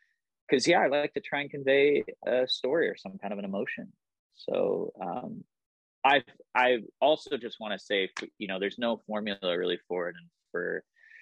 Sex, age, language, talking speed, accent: male, 20-39, English, 185 wpm, American